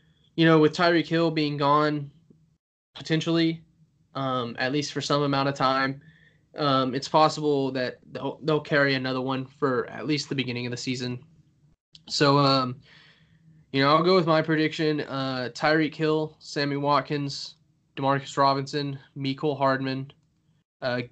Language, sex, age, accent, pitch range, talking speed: English, male, 10-29, American, 135-155 Hz, 150 wpm